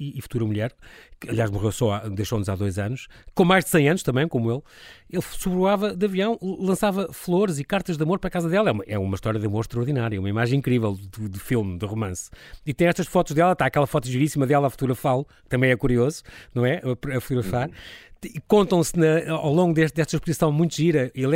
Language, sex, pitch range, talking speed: Portuguese, male, 115-160 Hz, 230 wpm